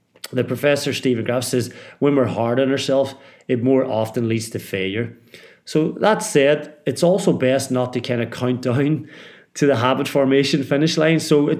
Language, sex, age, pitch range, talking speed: English, male, 30-49, 120-155 Hz, 185 wpm